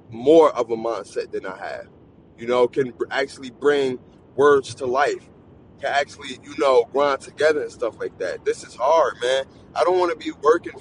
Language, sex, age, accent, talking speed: English, male, 20-39, American, 195 wpm